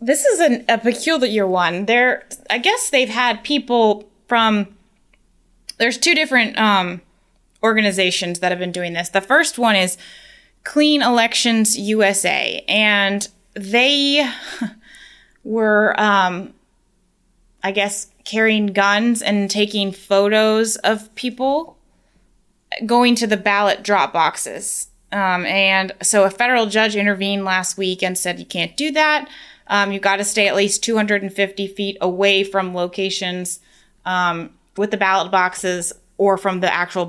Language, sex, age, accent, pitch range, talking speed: English, female, 20-39, American, 180-225 Hz, 140 wpm